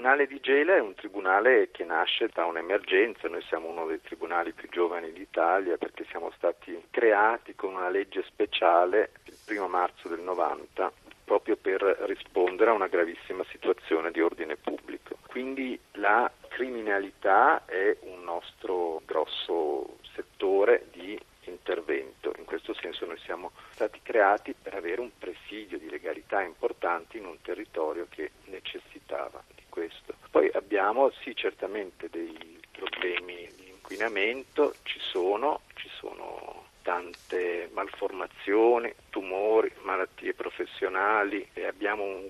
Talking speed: 130 wpm